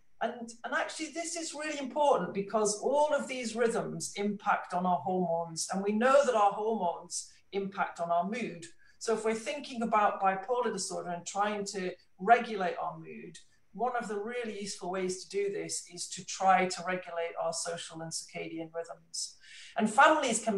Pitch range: 180-225 Hz